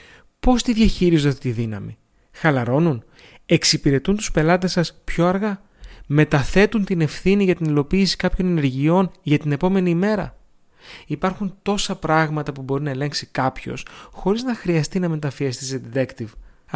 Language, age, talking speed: Greek, 30-49, 140 wpm